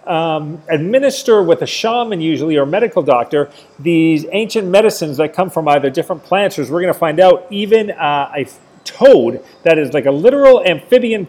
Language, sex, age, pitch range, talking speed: English, male, 40-59, 150-195 Hz, 170 wpm